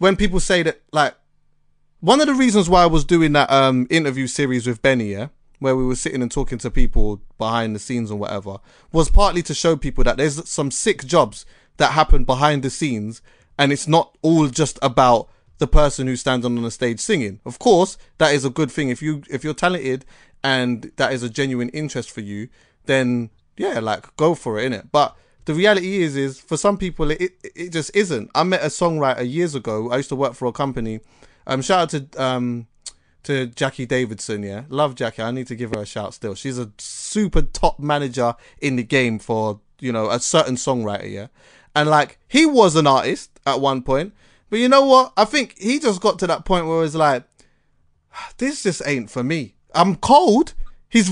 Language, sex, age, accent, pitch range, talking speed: English, male, 30-49, British, 125-165 Hz, 215 wpm